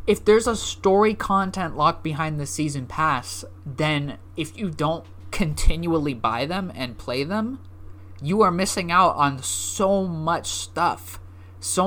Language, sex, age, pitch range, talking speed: English, male, 20-39, 125-170 Hz, 145 wpm